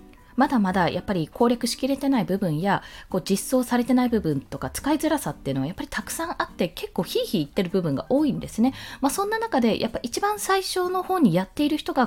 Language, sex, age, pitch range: Japanese, female, 20-39, 175-295 Hz